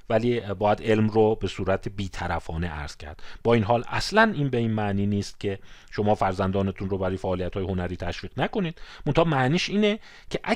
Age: 40-59